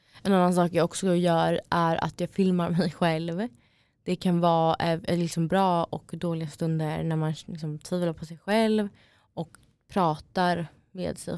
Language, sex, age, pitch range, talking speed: Swedish, female, 20-39, 160-190 Hz, 165 wpm